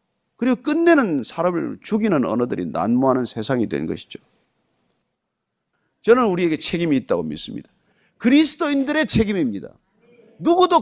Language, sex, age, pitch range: Korean, male, 40-59, 180-275 Hz